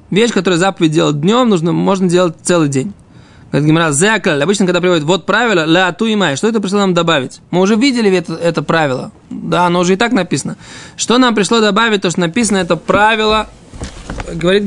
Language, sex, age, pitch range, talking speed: Russian, male, 20-39, 170-215 Hz, 190 wpm